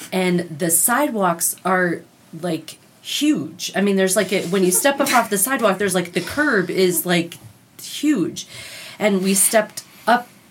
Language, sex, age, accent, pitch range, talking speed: English, female, 30-49, American, 170-195 Hz, 165 wpm